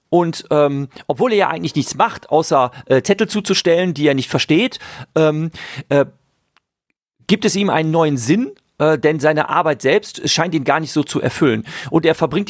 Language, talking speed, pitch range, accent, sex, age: German, 185 wpm, 140-185 Hz, German, male, 40-59